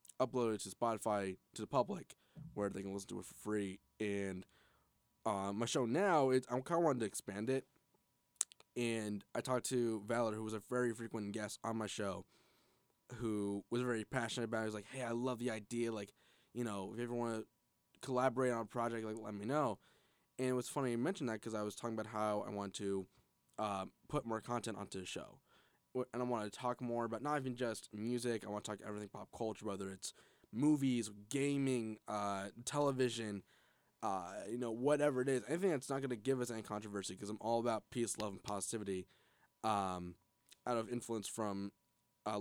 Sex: male